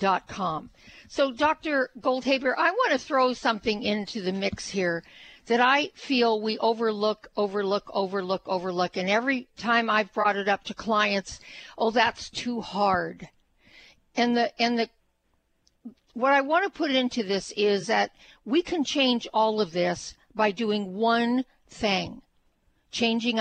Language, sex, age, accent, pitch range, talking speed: English, female, 60-79, American, 200-245 Hz, 140 wpm